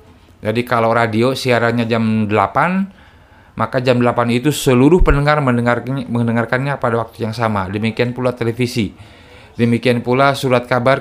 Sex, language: male, Indonesian